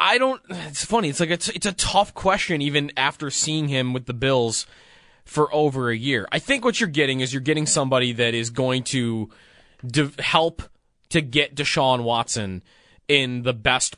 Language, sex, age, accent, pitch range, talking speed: English, male, 20-39, American, 120-150 Hz, 190 wpm